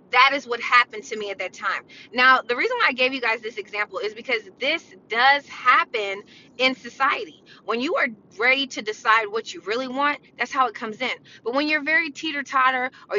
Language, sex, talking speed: English, female, 215 wpm